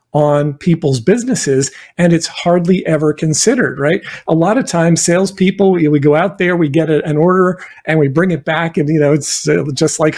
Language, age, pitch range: English, 50-69, 150-180 Hz